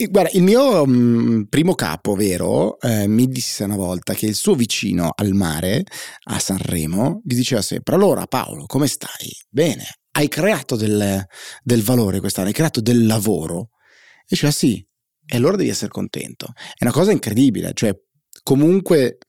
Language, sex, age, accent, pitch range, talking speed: Italian, male, 30-49, native, 105-135 Hz, 160 wpm